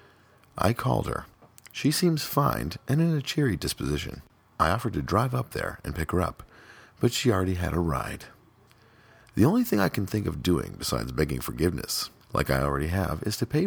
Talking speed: 200 wpm